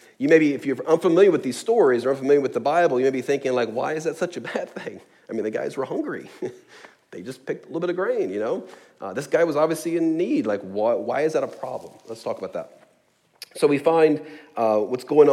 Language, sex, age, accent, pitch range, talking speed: English, male, 40-59, American, 110-145 Hz, 260 wpm